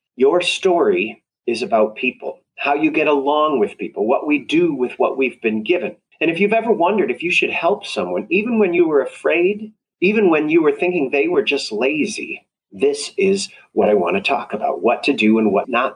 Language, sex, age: English, male, 30-49